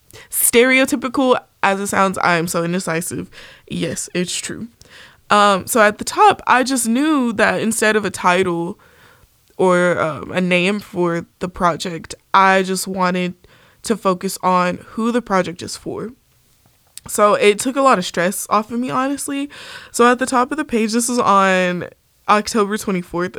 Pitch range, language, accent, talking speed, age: 180-235 Hz, English, American, 165 wpm, 20-39